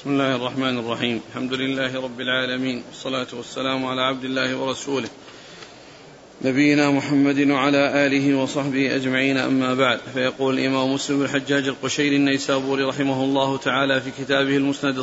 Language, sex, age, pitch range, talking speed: Arabic, male, 40-59, 135-150 Hz, 135 wpm